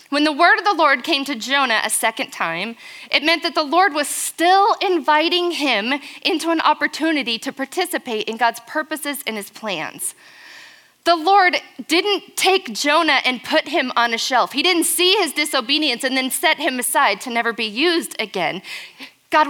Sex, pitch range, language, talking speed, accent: female, 235-335 Hz, English, 180 wpm, American